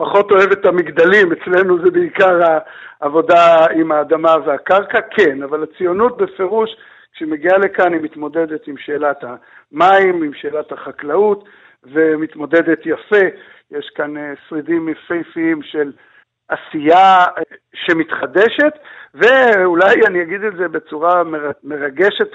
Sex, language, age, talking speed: male, Hebrew, 60-79, 115 wpm